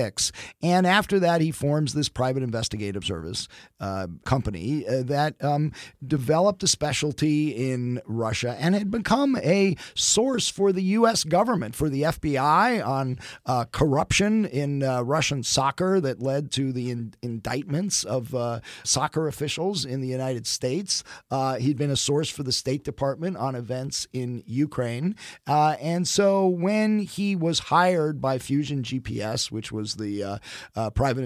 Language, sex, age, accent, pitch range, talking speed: English, male, 40-59, American, 115-150 Hz, 150 wpm